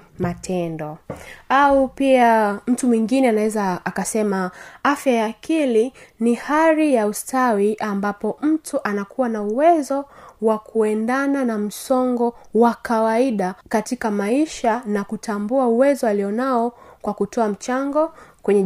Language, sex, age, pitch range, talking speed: Swahili, female, 20-39, 195-245 Hz, 115 wpm